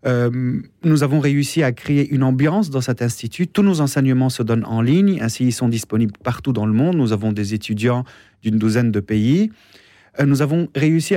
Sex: male